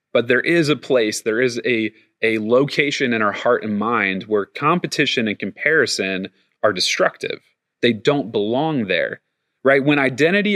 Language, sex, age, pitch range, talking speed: English, male, 30-49, 105-150 Hz, 160 wpm